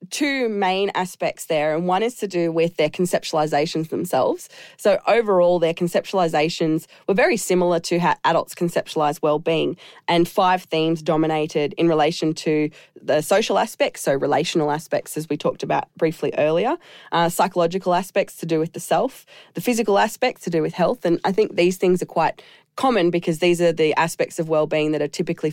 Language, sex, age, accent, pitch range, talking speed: English, female, 20-39, Australian, 150-180 Hz, 185 wpm